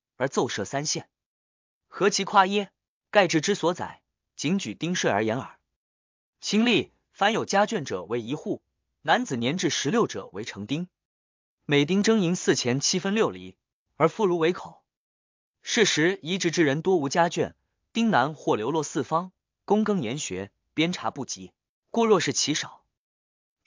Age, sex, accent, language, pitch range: 20-39, male, native, Chinese, 125-200 Hz